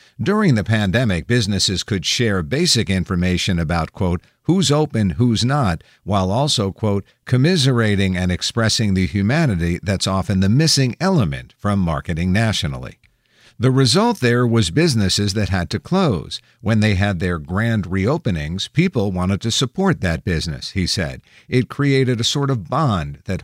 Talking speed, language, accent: 155 wpm, English, American